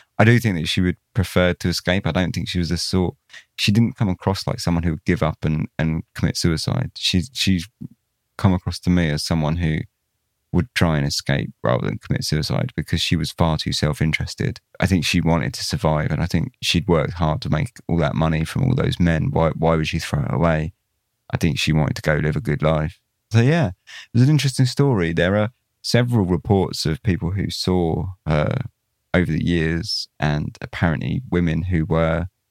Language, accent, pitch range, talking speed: English, British, 80-95 Hz, 210 wpm